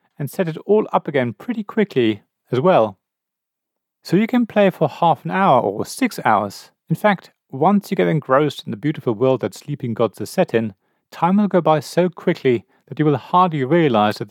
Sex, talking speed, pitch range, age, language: male, 205 wpm, 125-185 Hz, 40-59, English